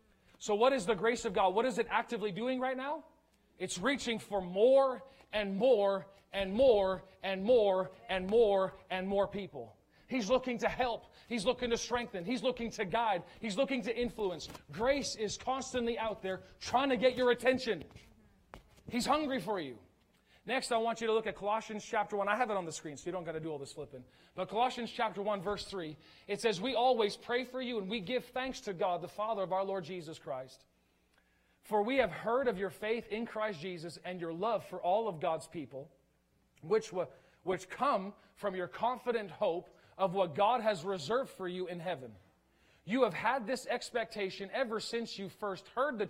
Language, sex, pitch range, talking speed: English, male, 185-235 Hz, 205 wpm